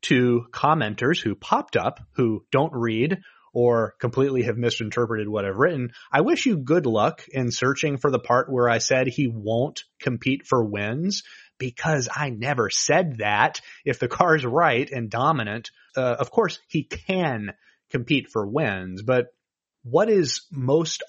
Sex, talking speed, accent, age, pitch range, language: male, 160 wpm, American, 30-49, 120-160 Hz, English